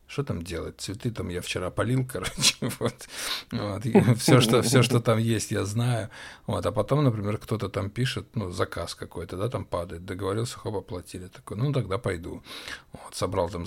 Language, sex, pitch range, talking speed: Russian, male, 95-120 Hz, 175 wpm